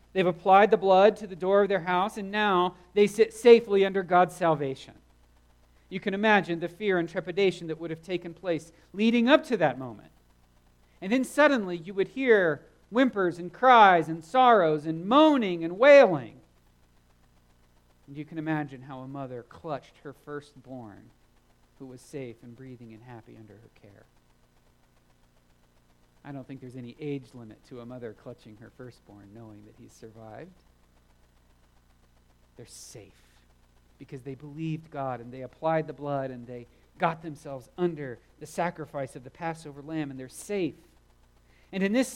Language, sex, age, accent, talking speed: English, male, 40-59, American, 165 wpm